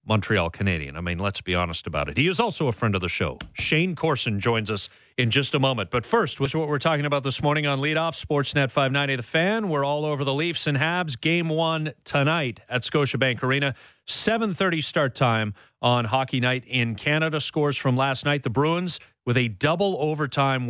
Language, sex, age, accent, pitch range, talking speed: English, male, 40-59, American, 115-145 Hz, 205 wpm